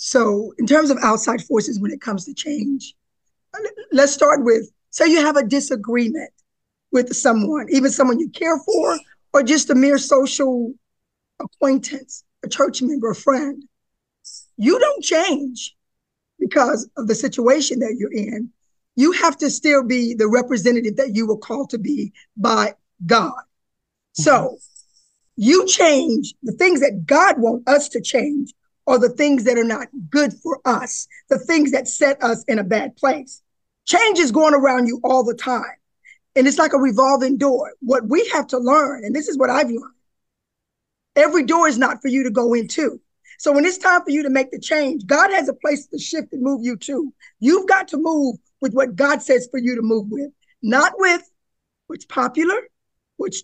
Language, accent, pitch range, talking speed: English, American, 250-300 Hz, 185 wpm